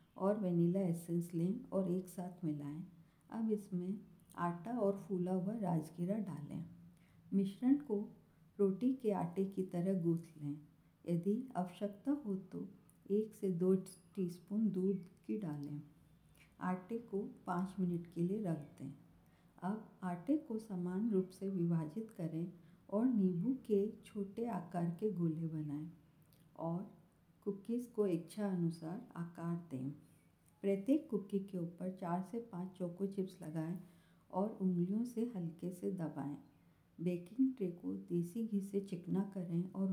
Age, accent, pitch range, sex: 50-69, native, 170-200 Hz, female